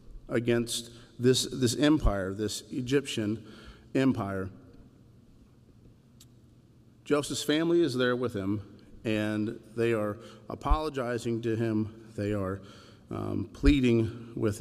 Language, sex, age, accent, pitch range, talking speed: English, male, 50-69, American, 110-130 Hz, 100 wpm